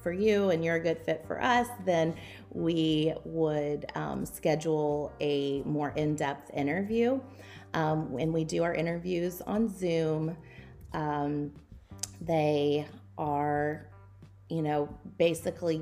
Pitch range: 145-175 Hz